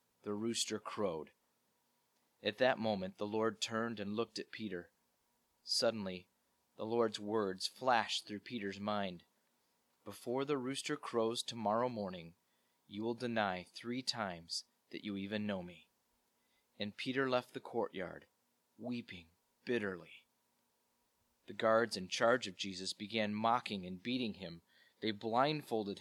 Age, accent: 30-49, American